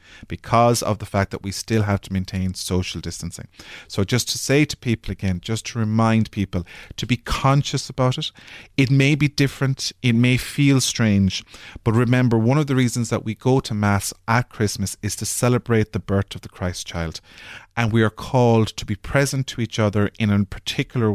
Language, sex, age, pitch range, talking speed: English, male, 30-49, 100-125 Hz, 200 wpm